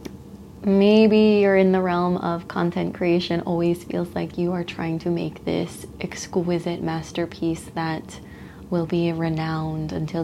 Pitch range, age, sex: 155-175 Hz, 20-39, female